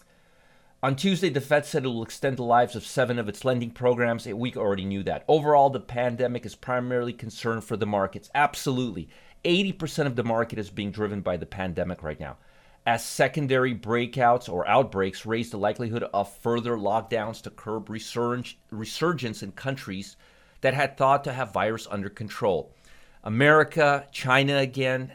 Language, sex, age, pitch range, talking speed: English, male, 30-49, 110-140 Hz, 170 wpm